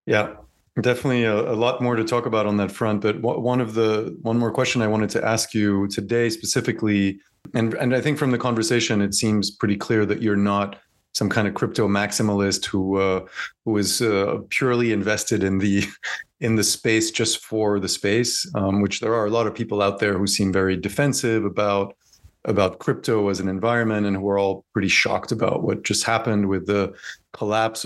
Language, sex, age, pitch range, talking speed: English, male, 30-49, 100-115 Hz, 200 wpm